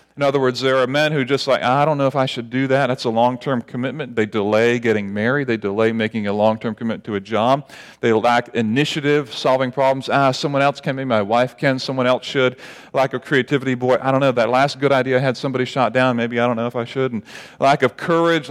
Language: English